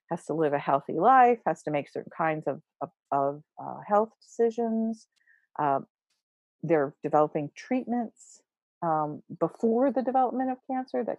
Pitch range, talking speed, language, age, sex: 160-235 Hz, 150 wpm, English, 50-69, female